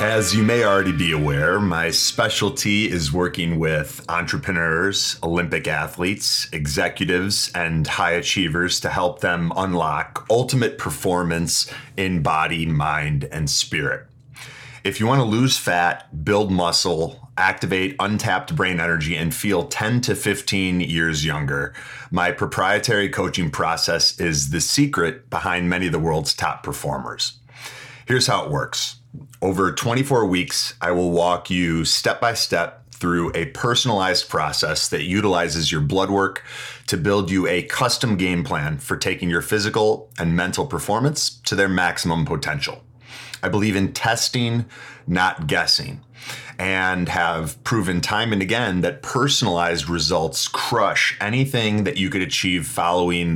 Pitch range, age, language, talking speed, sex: 85-120 Hz, 40-59, English, 140 wpm, male